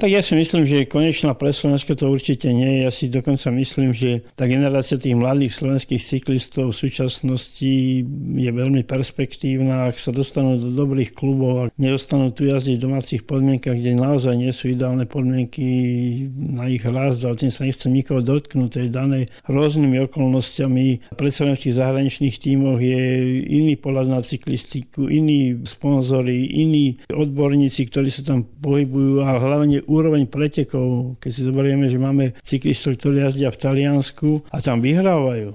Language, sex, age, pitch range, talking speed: Slovak, male, 50-69, 130-140 Hz, 155 wpm